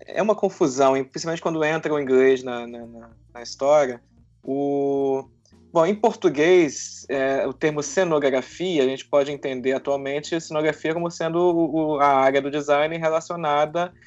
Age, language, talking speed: 20-39, Portuguese, 155 wpm